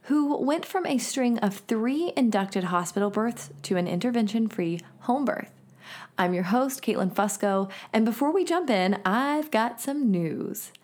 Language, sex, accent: English, female, American